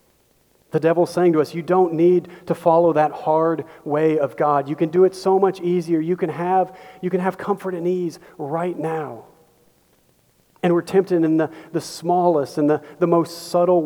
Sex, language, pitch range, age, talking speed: male, English, 155-185 Hz, 40-59, 185 wpm